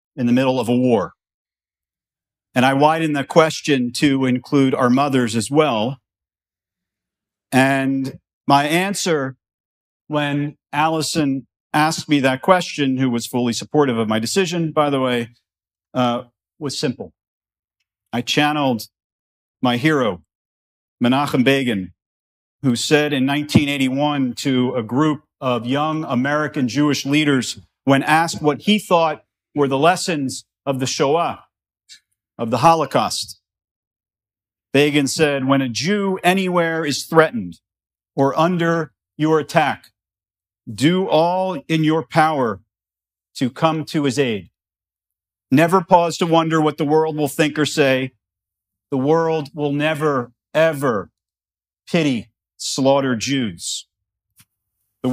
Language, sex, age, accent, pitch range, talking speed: English, male, 50-69, American, 115-155 Hz, 125 wpm